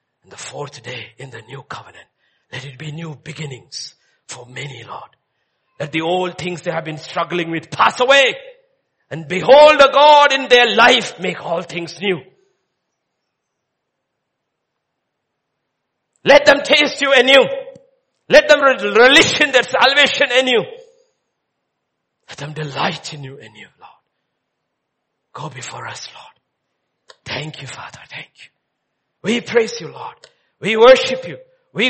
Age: 60-79